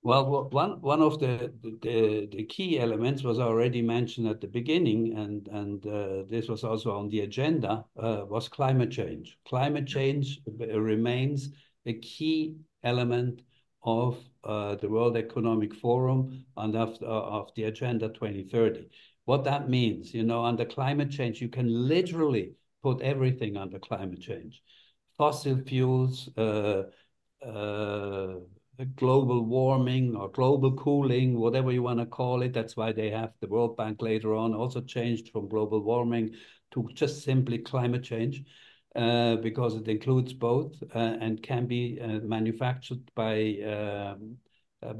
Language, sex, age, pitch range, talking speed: English, male, 60-79, 110-130 Hz, 145 wpm